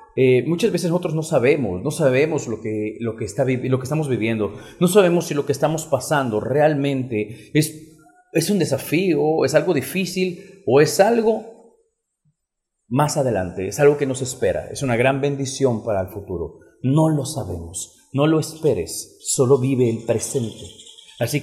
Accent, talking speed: Mexican, 170 wpm